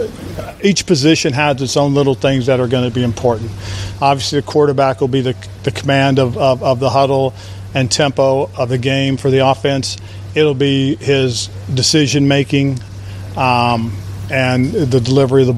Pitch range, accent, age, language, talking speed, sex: 120-140 Hz, American, 40-59, English, 175 wpm, male